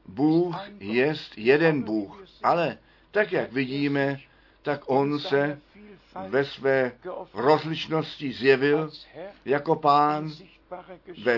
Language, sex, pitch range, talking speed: Czech, male, 125-165 Hz, 95 wpm